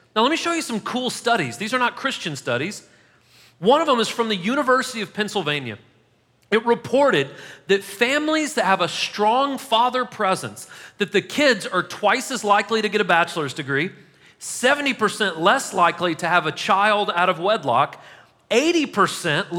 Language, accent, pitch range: English, American, 175-240 Hz